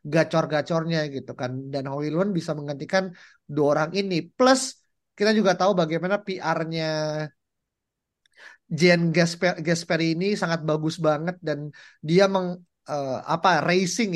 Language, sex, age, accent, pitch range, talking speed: Indonesian, male, 30-49, native, 155-190 Hz, 120 wpm